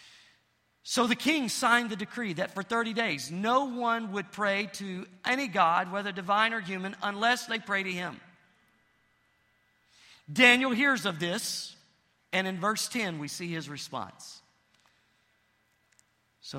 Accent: American